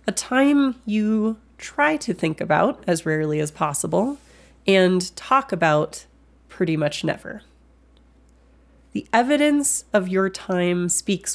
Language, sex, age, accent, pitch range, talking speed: English, female, 30-49, American, 155-210 Hz, 120 wpm